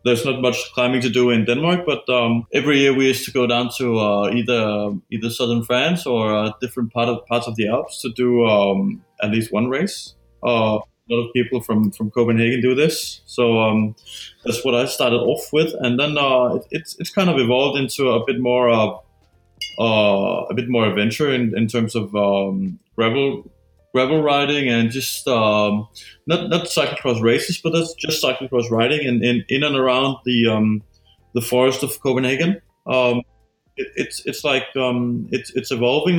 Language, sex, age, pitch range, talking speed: English, male, 20-39, 110-135 Hz, 195 wpm